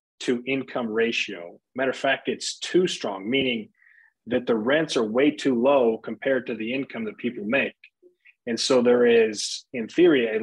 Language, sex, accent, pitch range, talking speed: English, male, American, 115-140 Hz, 180 wpm